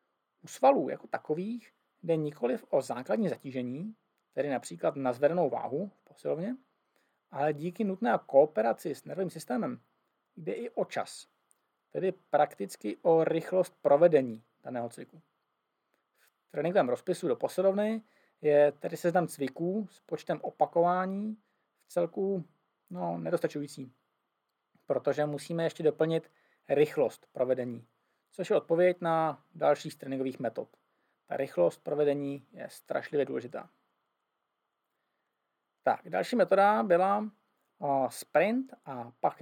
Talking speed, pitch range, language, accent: 115 wpm, 140-185 Hz, Czech, native